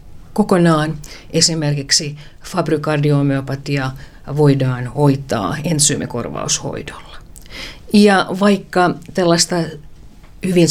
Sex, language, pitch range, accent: female, Finnish, 135-165 Hz, native